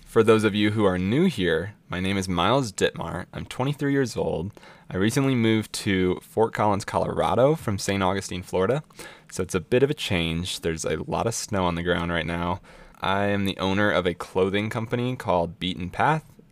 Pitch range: 90-115 Hz